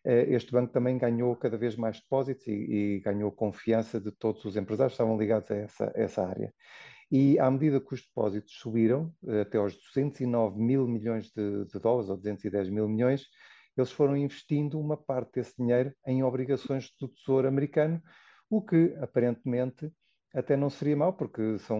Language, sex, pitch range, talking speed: Portuguese, male, 105-130 Hz, 170 wpm